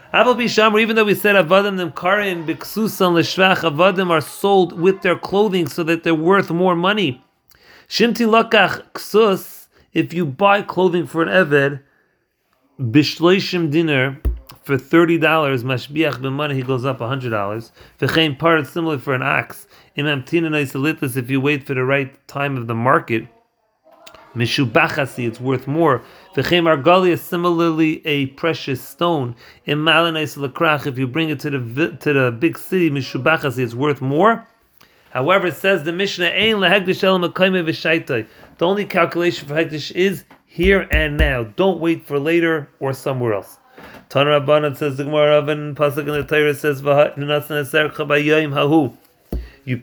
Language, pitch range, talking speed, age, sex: English, 140-180 Hz, 140 wpm, 40-59, male